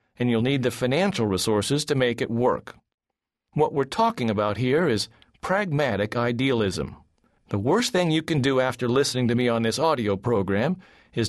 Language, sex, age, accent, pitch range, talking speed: English, male, 40-59, American, 115-155 Hz, 175 wpm